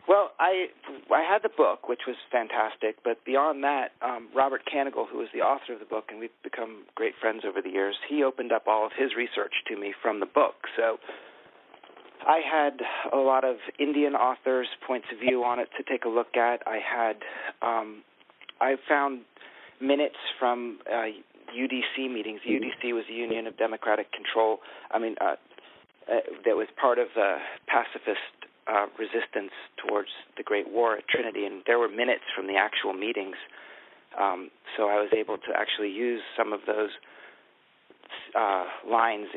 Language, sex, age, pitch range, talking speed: English, male, 40-59, 115-140 Hz, 175 wpm